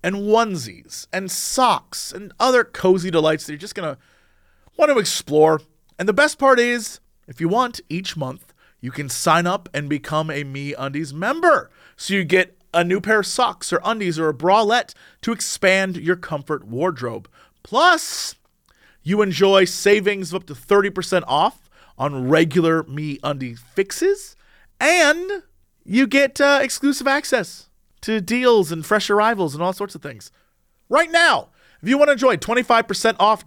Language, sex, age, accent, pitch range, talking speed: English, male, 30-49, American, 165-275 Hz, 165 wpm